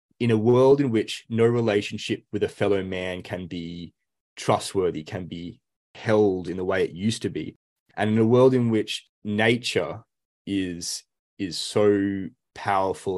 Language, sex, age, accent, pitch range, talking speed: English, male, 20-39, Australian, 90-110 Hz, 160 wpm